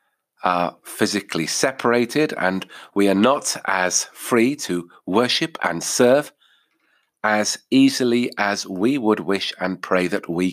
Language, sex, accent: English, male, British